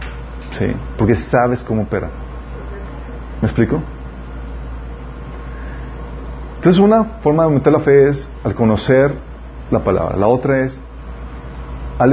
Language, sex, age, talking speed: Spanish, male, 40-59, 115 wpm